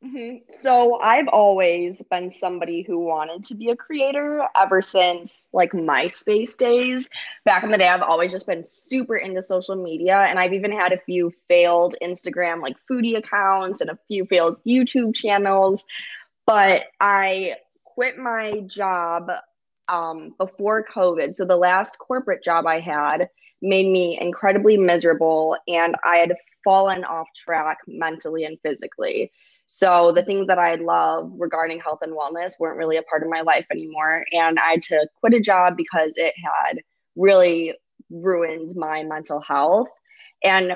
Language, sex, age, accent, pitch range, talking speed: English, female, 20-39, American, 165-200 Hz, 160 wpm